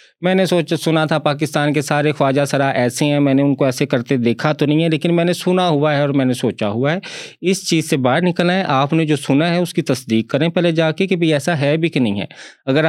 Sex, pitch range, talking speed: male, 140-170 Hz, 285 wpm